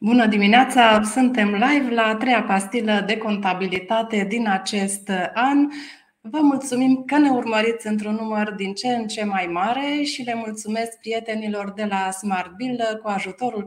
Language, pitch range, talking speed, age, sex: Romanian, 195-235 Hz, 155 wpm, 30-49, female